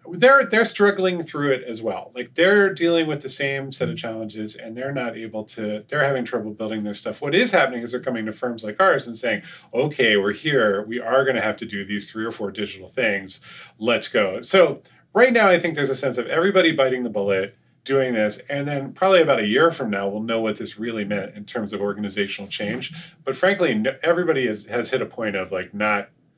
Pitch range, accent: 110-170 Hz, American